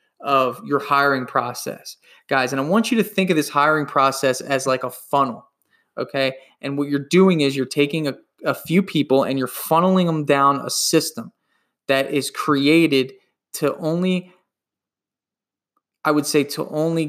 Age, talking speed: 20-39, 170 wpm